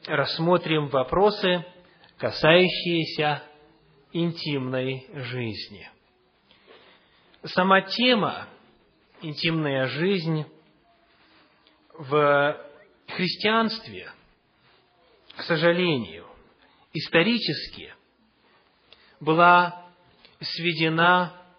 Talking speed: 45 wpm